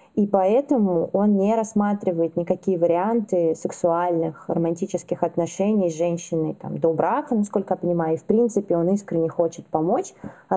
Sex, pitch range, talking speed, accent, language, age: female, 170-205 Hz, 150 wpm, native, Russian, 20-39